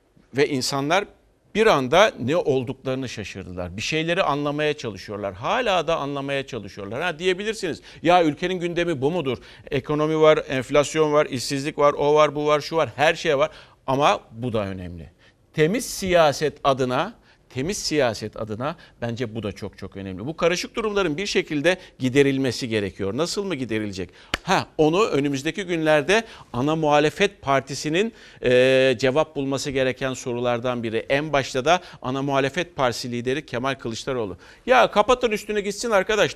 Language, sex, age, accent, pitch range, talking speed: Turkish, male, 50-69, native, 125-170 Hz, 150 wpm